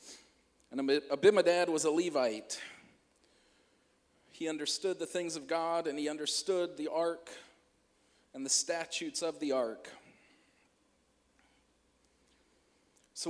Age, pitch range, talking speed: 40-59, 145-185 Hz, 105 wpm